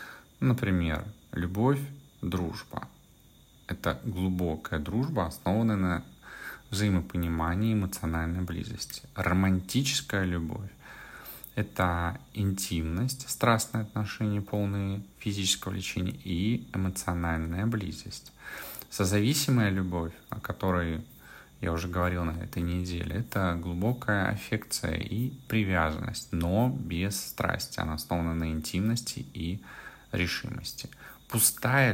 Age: 30-49